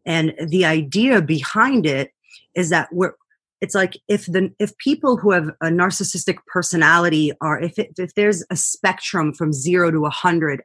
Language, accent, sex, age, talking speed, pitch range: English, American, female, 30-49, 170 wpm, 160-210 Hz